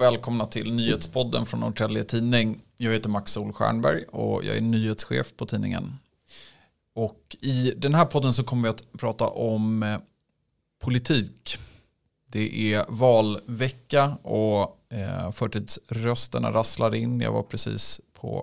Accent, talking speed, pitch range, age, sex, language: native, 115 wpm, 110-125 Hz, 30-49, male, Swedish